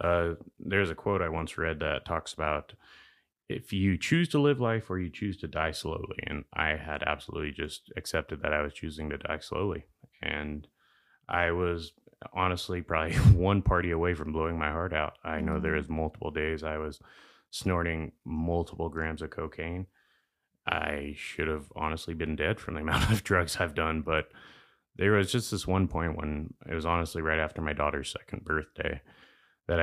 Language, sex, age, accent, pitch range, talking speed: English, male, 30-49, American, 80-95 Hz, 185 wpm